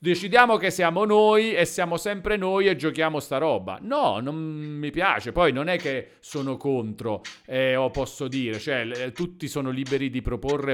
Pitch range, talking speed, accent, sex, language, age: 130-180 Hz, 180 wpm, native, male, Italian, 40-59